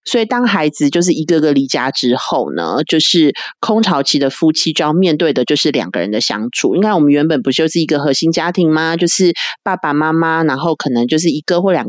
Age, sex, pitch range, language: 30-49, female, 150-205 Hz, Chinese